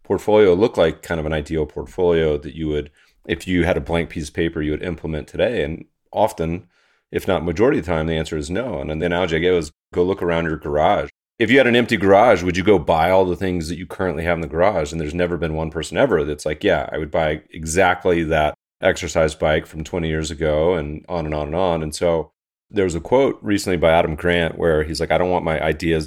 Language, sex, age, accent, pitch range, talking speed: English, male, 30-49, American, 80-95 Hz, 260 wpm